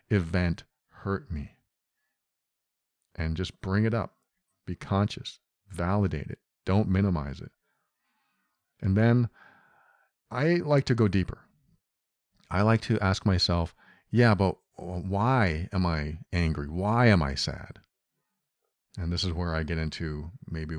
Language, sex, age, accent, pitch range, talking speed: English, male, 40-59, American, 85-115 Hz, 130 wpm